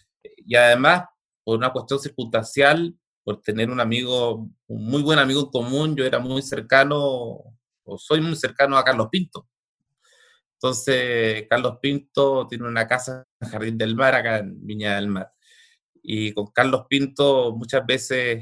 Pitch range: 115-150 Hz